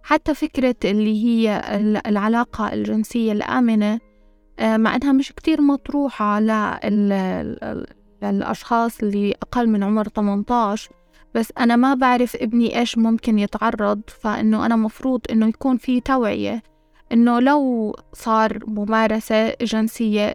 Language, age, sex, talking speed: Arabic, 20-39, female, 120 wpm